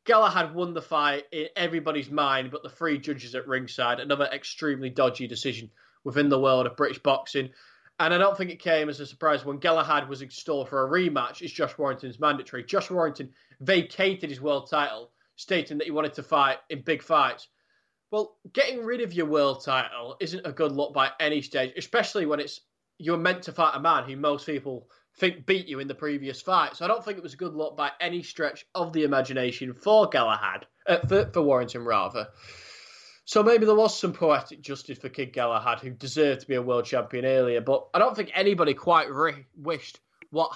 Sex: male